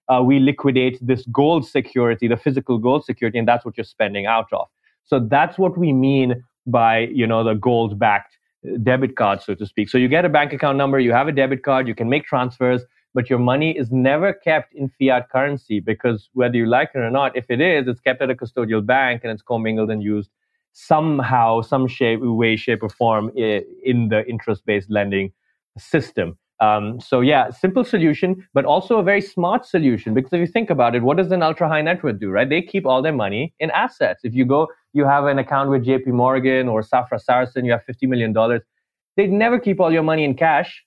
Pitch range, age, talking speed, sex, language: 120-150 Hz, 20-39, 215 wpm, male, English